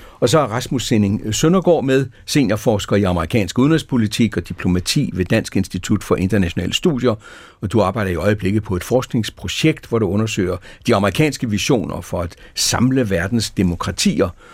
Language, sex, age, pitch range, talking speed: Danish, male, 60-79, 95-125 Hz, 155 wpm